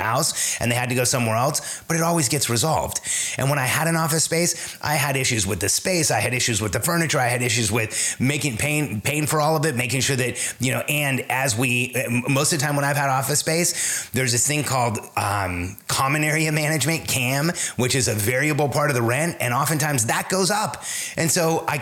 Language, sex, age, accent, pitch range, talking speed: English, male, 30-49, American, 125-150 Hz, 235 wpm